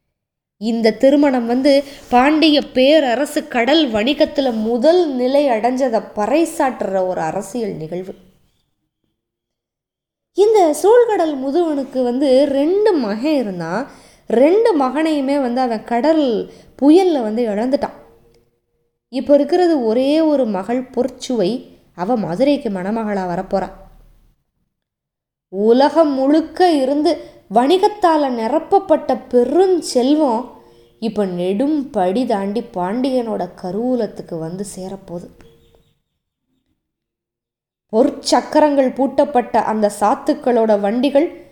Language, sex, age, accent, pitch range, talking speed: Tamil, female, 20-39, native, 200-290 Hz, 85 wpm